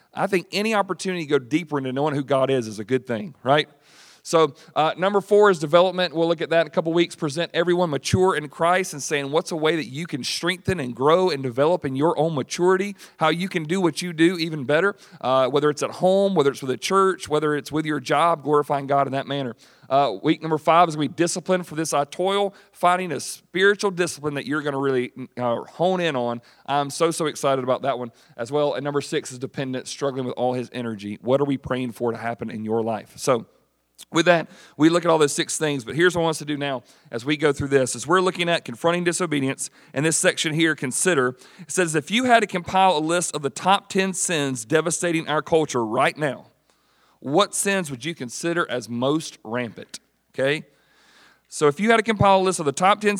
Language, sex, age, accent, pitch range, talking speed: English, male, 40-59, American, 140-175 Hz, 240 wpm